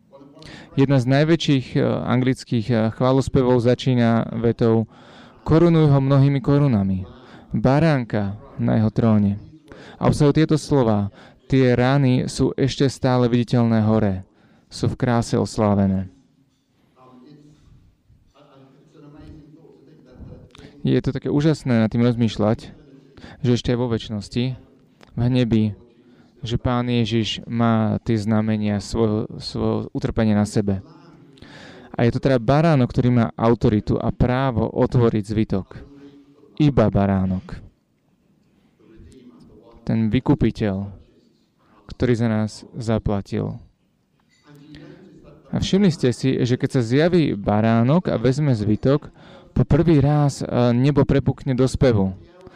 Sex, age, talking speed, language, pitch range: male, 30-49, 105 wpm, Slovak, 110-140 Hz